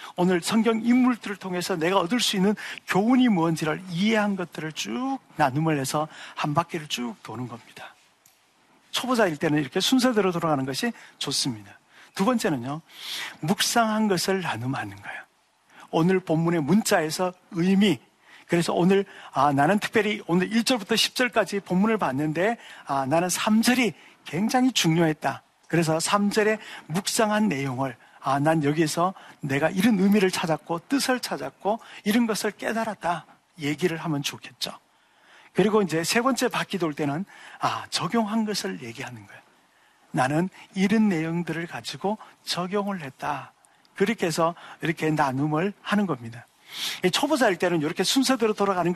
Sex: male